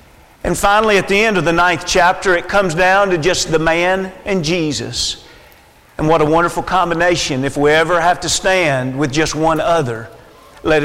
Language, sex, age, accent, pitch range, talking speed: English, male, 50-69, American, 175-240 Hz, 190 wpm